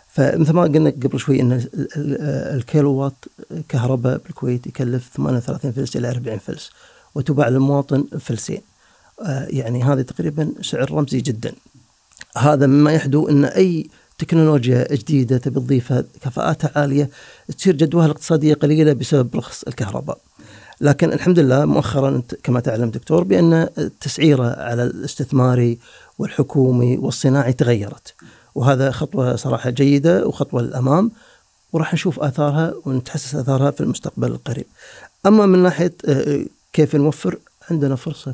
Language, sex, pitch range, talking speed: Arabic, male, 130-155 Hz, 120 wpm